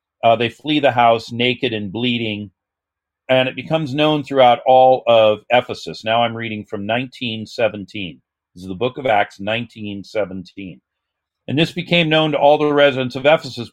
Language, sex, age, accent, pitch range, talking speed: English, male, 50-69, American, 120-165 Hz, 165 wpm